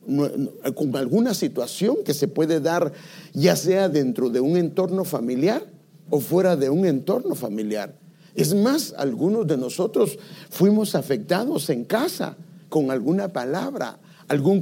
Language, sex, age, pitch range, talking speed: English, male, 50-69, 160-200 Hz, 135 wpm